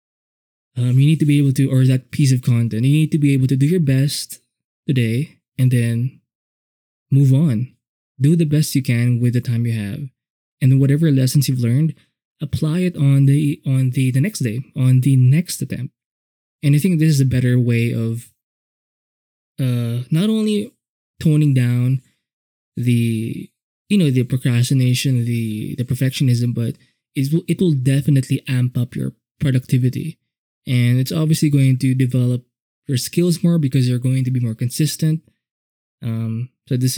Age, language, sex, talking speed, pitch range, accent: 20-39, English, male, 170 wpm, 125-145 Hz, Filipino